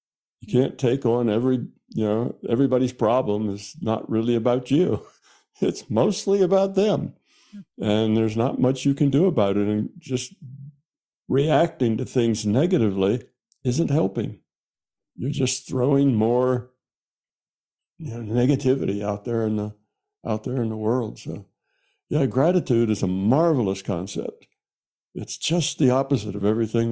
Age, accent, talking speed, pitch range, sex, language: 60-79, American, 145 wpm, 110-140 Hz, male, English